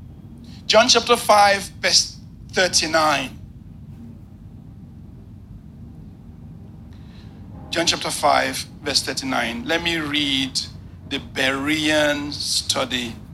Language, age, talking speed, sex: English, 60-79, 70 wpm, male